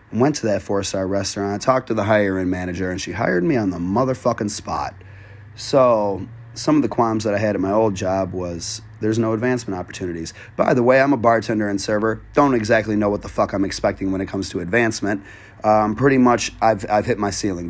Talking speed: 220 wpm